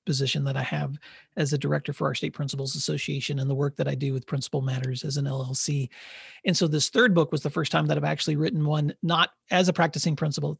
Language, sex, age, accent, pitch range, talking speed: English, male, 40-59, American, 145-175 Hz, 250 wpm